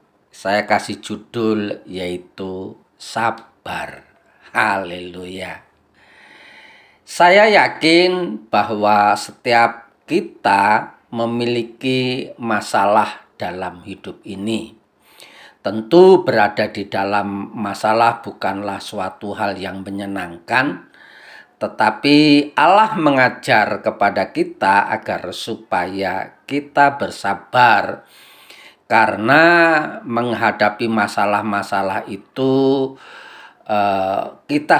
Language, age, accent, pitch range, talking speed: Indonesian, 40-59, native, 100-125 Hz, 70 wpm